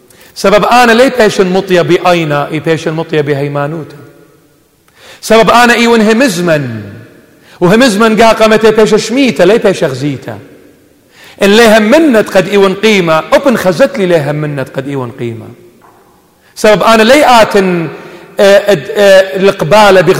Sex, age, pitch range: male, 40-59, 155-220 Hz